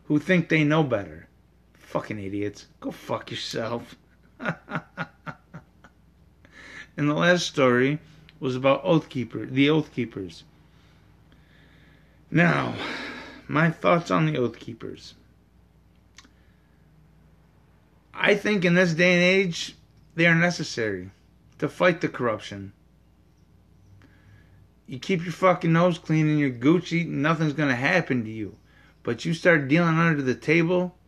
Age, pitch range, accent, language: 30-49, 120-165 Hz, American, English